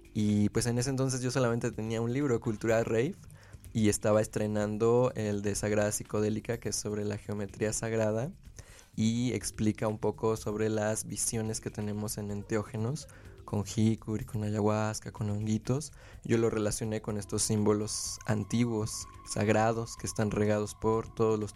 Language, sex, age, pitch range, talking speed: Spanish, male, 20-39, 105-115 Hz, 155 wpm